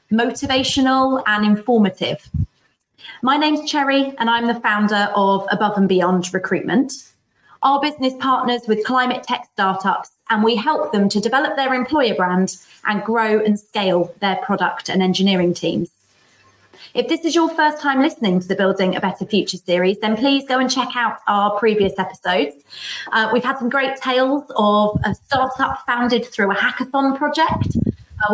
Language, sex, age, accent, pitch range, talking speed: English, female, 30-49, British, 195-260 Hz, 165 wpm